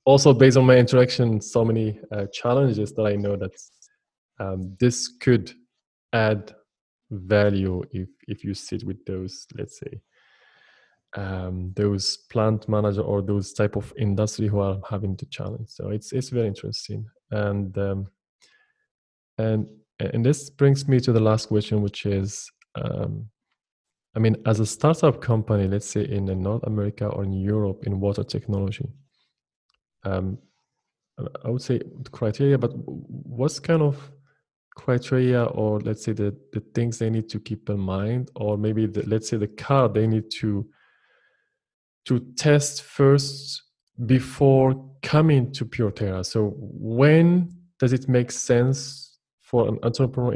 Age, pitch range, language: 20-39, 105-130 Hz, English